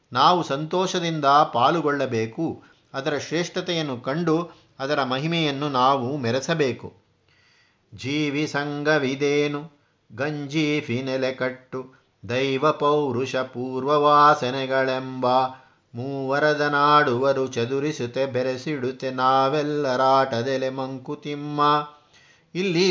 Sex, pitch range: male, 130-155 Hz